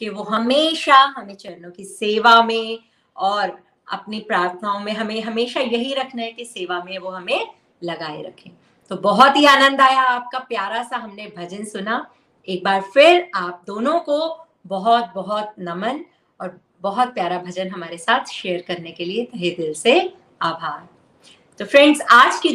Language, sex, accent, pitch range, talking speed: Hindi, female, native, 195-270 Hz, 160 wpm